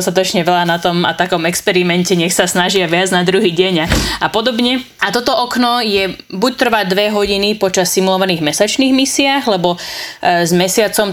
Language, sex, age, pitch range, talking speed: Slovak, female, 20-39, 175-195 Hz, 180 wpm